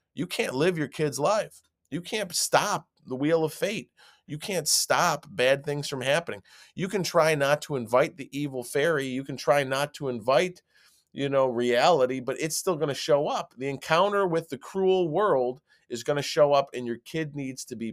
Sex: male